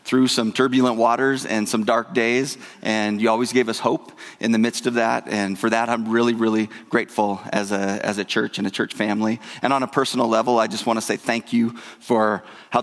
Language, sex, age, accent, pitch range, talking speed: English, male, 30-49, American, 115-140 Hz, 225 wpm